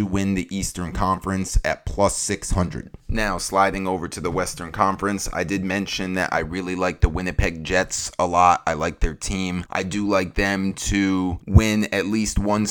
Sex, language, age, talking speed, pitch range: male, English, 30-49, 190 wpm, 85-100 Hz